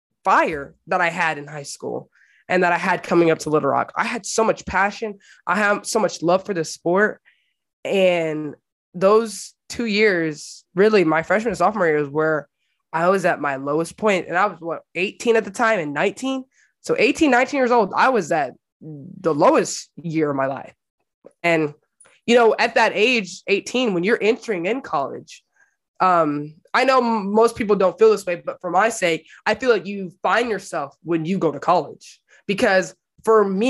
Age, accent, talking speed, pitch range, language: 20-39, American, 195 wpm, 170-220 Hz, English